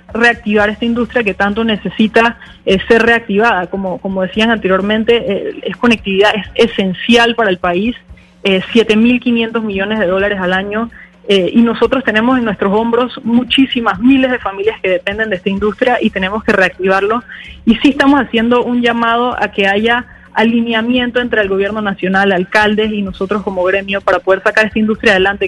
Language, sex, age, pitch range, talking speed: Spanish, female, 20-39, 195-235 Hz, 170 wpm